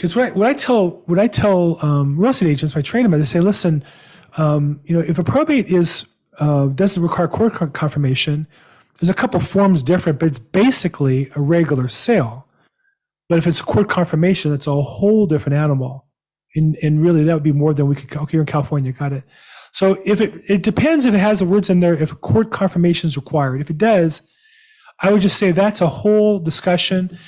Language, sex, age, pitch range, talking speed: English, male, 30-49, 150-185 Hz, 215 wpm